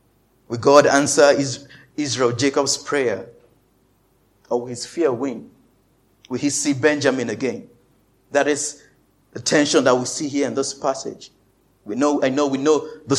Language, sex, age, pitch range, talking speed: English, male, 50-69, 120-140 Hz, 155 wpm